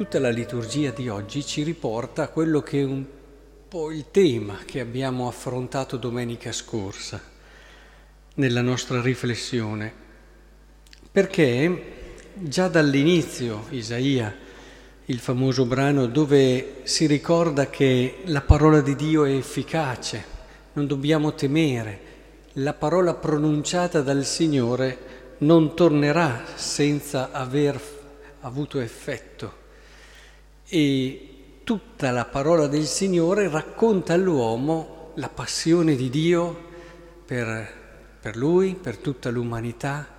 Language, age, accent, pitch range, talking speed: Italian, 50-69, native, 125-160 Hz, 105 wpm